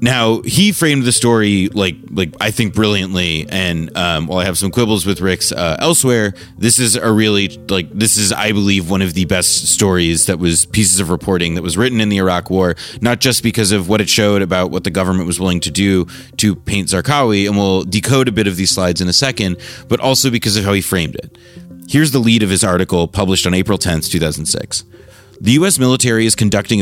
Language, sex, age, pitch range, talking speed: English, male, 30-49, 90-115 Hz, 230 wpm